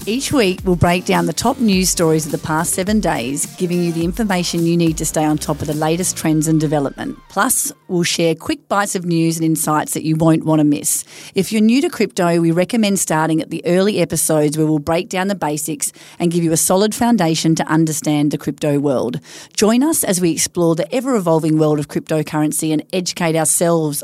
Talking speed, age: 215 wpm, 40-59